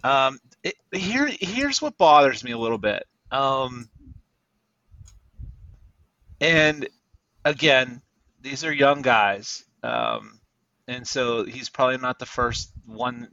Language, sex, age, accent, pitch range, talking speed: English, male, 30-49, American, 120-170 Hz, 115 wpm